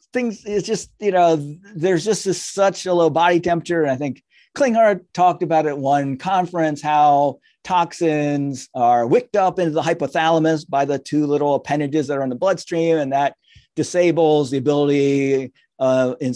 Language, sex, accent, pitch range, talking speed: English, male, American, 140-180 Hz, 175 wpm